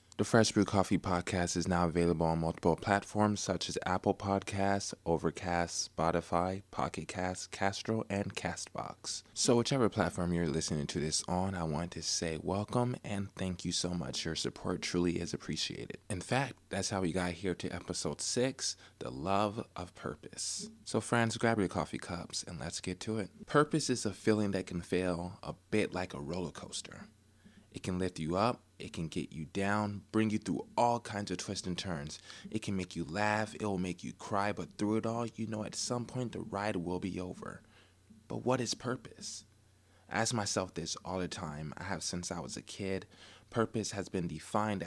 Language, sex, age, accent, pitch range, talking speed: English, male, 20-39, American, 90-110 Hz, 200 wpm